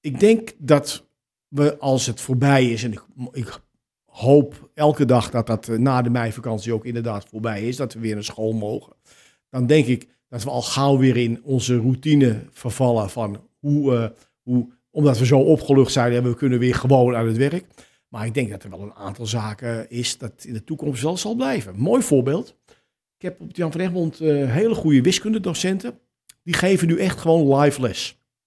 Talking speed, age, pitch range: 200 wpm, 50-69, 120-150 Hz